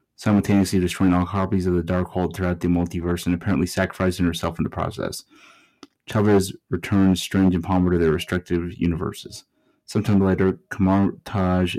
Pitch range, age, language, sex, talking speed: 85-95 Hz, 30-49, English, male, 155 wpm